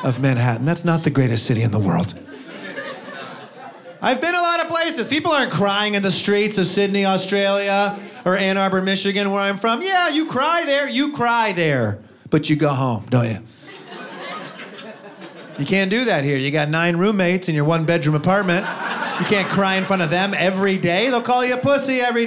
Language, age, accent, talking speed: English, 30-49, American, 200 wpm